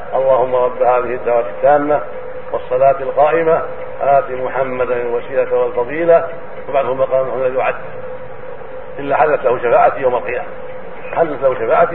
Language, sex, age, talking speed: Arabic, male, 50-69, 115 wpm